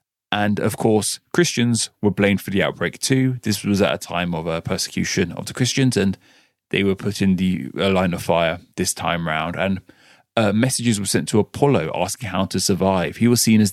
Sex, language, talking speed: male, English, 215 wpm